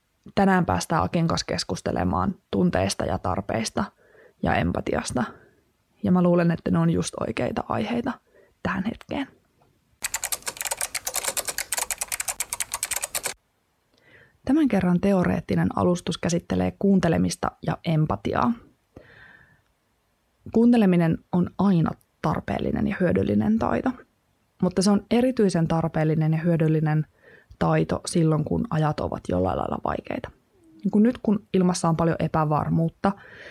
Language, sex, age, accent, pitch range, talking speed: Finnish, female, 20-39, native, 155-185 Hz, 100 wpm